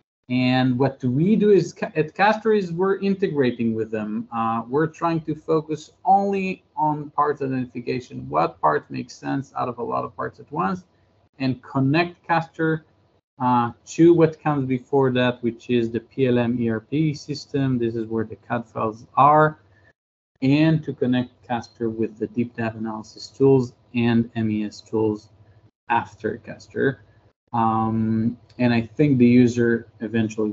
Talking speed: 155 wpm